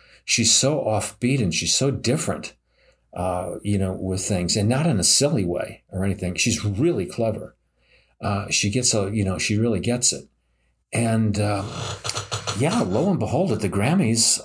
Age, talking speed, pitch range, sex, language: 50-69, 175 wpm, 90-115 Hz, male, English